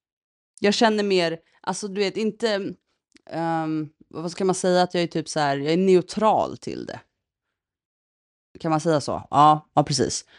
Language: Swedish